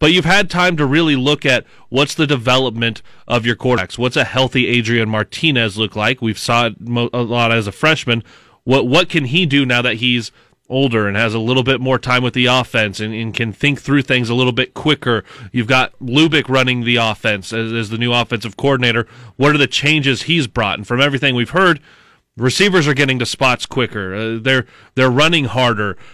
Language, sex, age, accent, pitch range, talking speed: English, male, 30-49, American, 120-145 Hz, 210 wpm